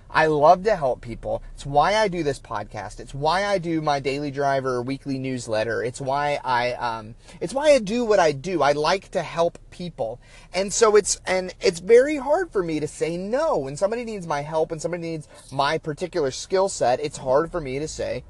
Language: English